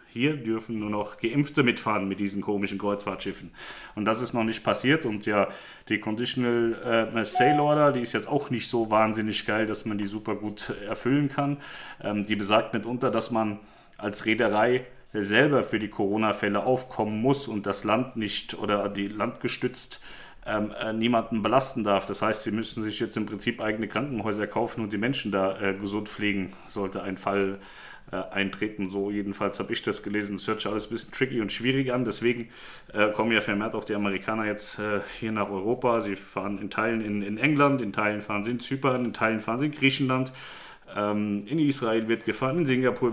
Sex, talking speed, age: male, 185 wpm, 40-59